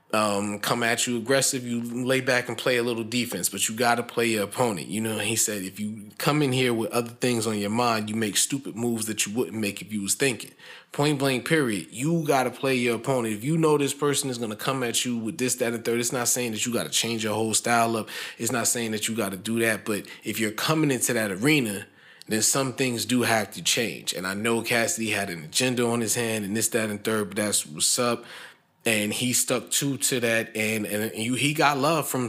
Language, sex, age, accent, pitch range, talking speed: English, male, 20-39, American, 105-125 Hz, 255 wpm